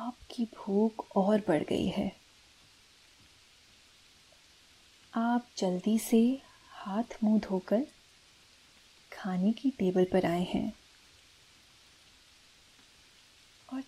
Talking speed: 80 wpm